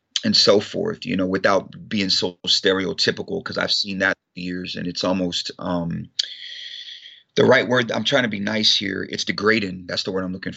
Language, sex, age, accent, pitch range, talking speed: English, male, 30-49, American, 95-110 Hz, 195 wpm